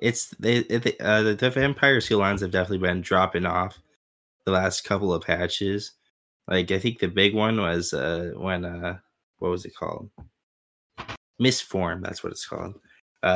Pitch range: 90-105 Hz